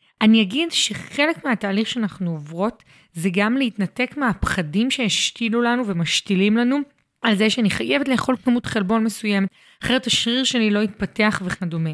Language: Hebrew